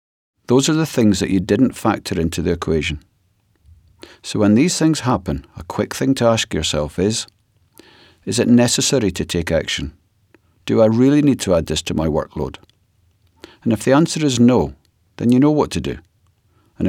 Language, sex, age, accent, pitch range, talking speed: English, male, 50-69, British, 90-125 Hz, 185 wpm